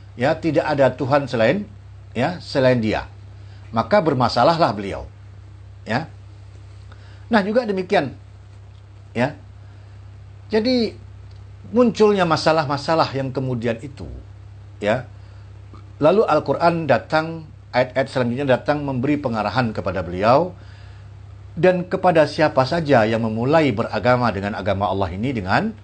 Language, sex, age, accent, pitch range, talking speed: Indonesian, male, 50-69, native, 100-155 Hz, 105 wpm